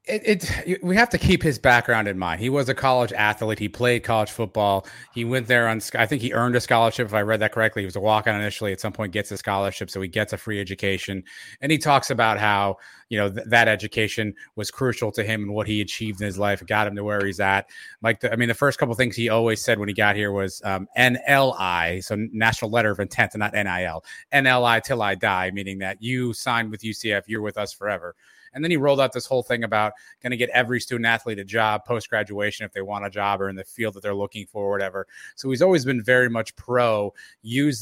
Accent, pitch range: American, 105-125 Hz